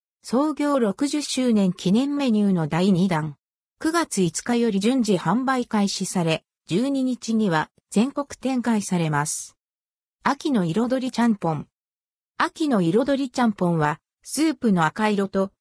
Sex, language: female, Japanese